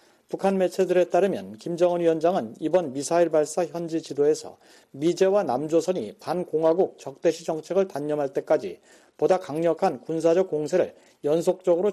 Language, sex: Korean, male